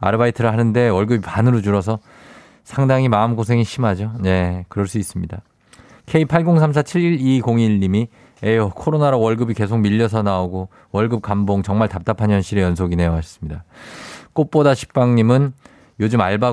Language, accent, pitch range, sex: Korean, native, 95-125 Hz, male